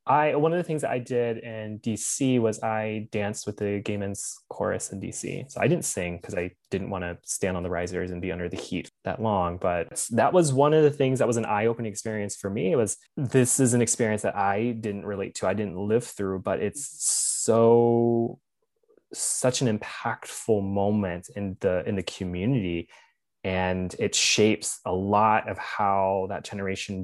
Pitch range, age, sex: 95-115 Hz, 20-39, male